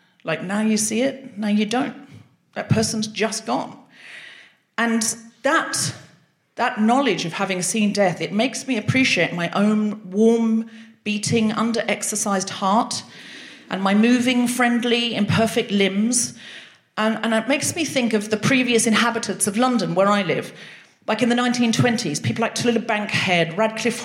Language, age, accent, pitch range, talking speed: English, 40-59, British, 180-235 Hz, 150 wpm